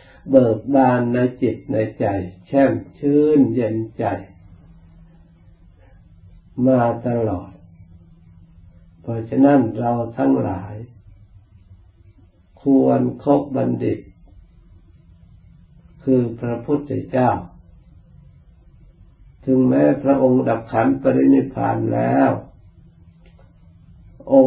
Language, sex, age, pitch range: Thai, male, 60-79, 90-130 Hz